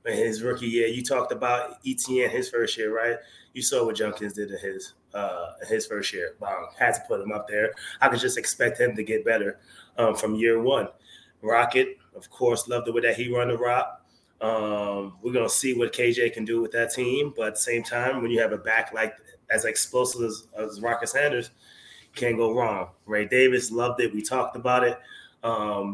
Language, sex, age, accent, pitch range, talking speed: English, male, 20-39, American, 115-130 Hz, 215 wpm